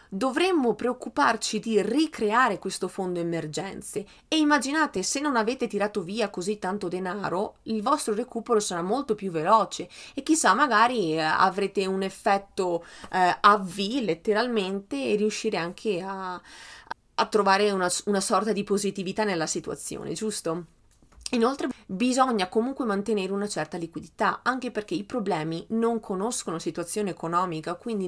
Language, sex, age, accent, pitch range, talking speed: Italian, female, 30-49, native, 185-235 Hz, 135 wpm